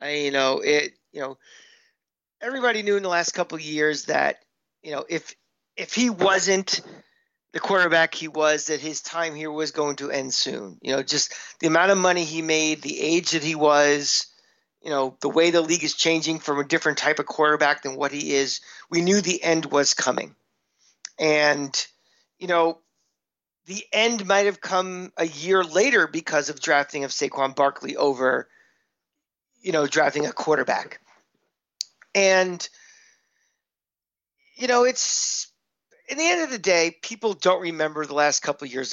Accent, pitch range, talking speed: American, 145-190 Hz, 175 wpm